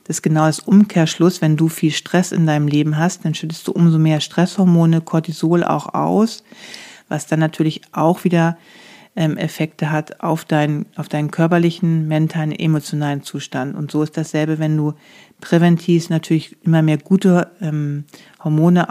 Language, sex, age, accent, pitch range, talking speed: German, female, 40-59, German, 155-175 Hz, 160 wpm